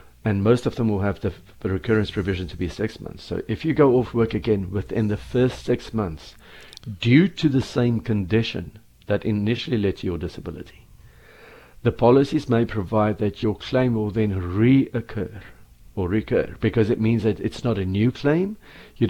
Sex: male